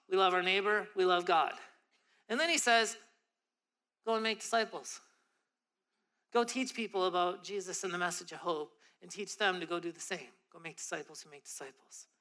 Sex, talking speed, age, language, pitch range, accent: male, 190 wpm, 40-59, English, 175-230 Hz, American